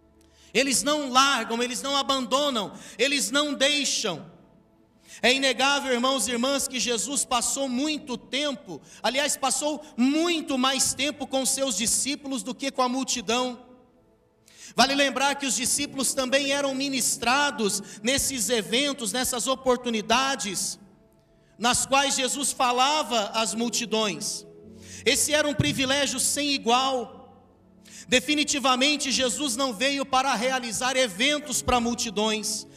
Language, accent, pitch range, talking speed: Portuguese, Brazilian, 235-275 Hz, 120 wpm